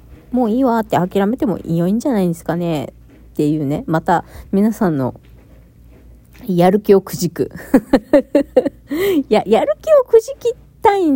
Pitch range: 155-240 Hz